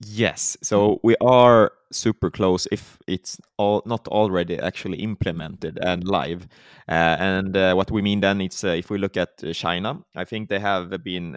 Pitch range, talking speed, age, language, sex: 90-110 Hz, 185 wpm, 20-39, Swedish, male